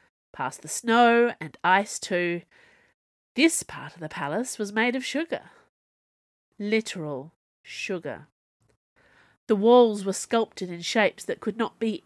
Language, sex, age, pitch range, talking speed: English, female, 30-49, 170-240 Hz, 135 wpm